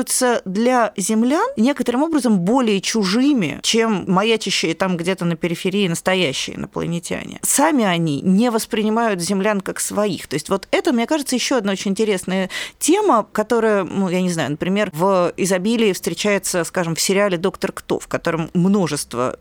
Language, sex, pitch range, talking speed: Russian, female, 170-225 Hz, 150 wpm